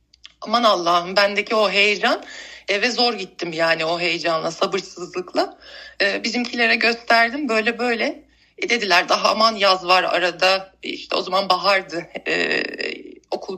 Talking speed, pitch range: 130 wpm, 200-275 Hz